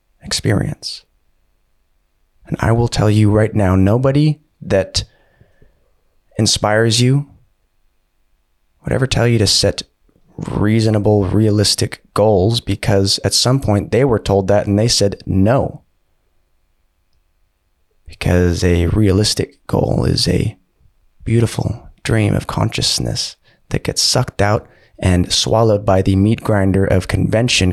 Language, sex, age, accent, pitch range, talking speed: English, male, 20-39, American, 85-110 Hz, 120 wpm